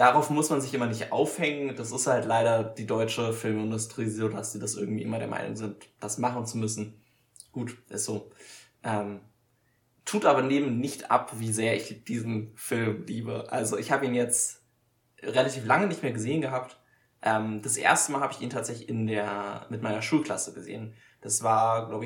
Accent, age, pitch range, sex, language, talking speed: German, 20-39, 110-125 Hz, male, German, 185 wpm